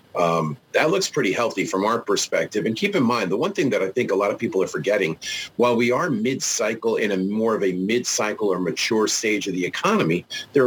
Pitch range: 105-130 Hz